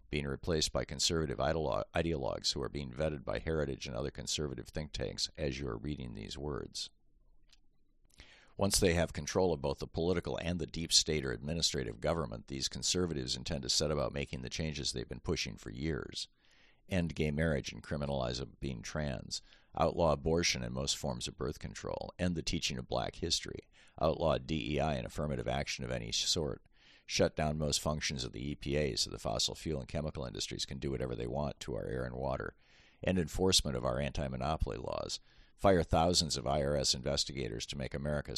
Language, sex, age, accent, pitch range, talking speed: English, male, 50-69, American, 65-80 Hz, 185 wpm